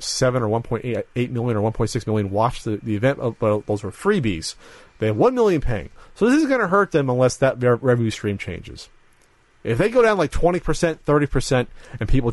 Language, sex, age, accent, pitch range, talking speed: English, male, 30-49, American, 110-165 Hz, 205 wpm